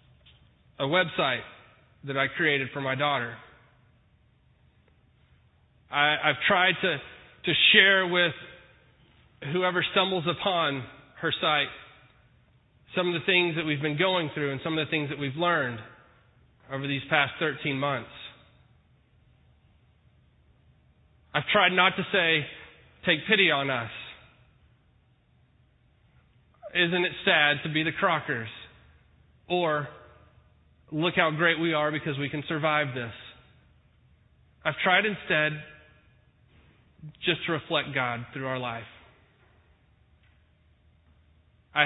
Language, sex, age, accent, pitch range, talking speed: English, male, 30-49, American, 135-160 Hz, 115 wpm